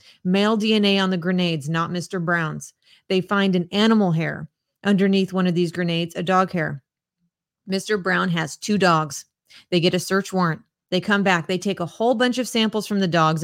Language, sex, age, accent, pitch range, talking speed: English, female, 30-49, American, 170-205 Hz, 195 wpm